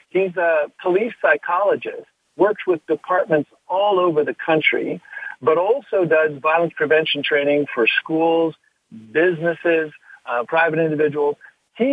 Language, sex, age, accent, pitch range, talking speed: English, male, 50-69, American, 130-175 Hz, 120 wpm